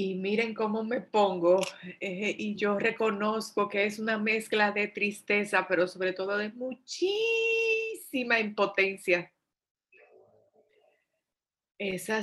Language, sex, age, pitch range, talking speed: Spanish, female, 30-49, 180-215 Hz, 110 wpm